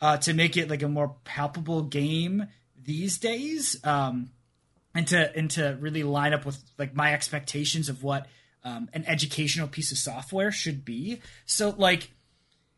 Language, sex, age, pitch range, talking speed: English, male, 20-39, 140-165 Hz, 165 wpm